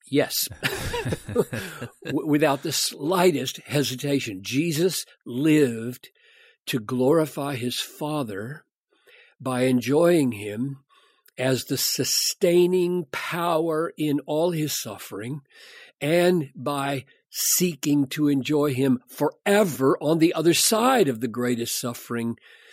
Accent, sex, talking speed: American, male, 100 wpm